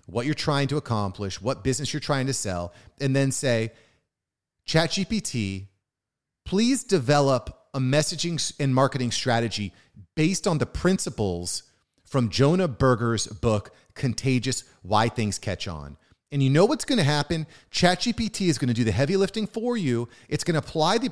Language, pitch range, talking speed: English, 115-170 Hz, 160 wpm